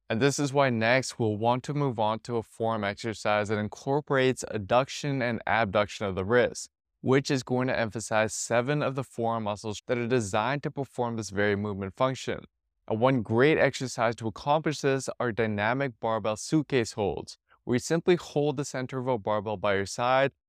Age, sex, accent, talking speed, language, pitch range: 20-39, male, American, 190 wpm, English, 110-135 Hz